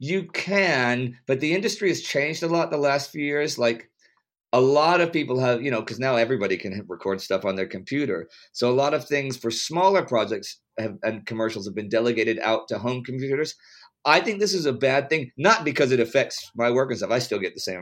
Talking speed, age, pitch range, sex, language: 225 wpm, 50-69, 115-150 Hz, male, English